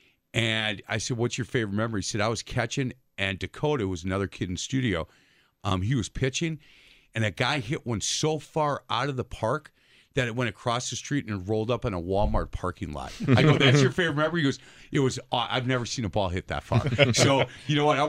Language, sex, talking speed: English, male, 250 wpm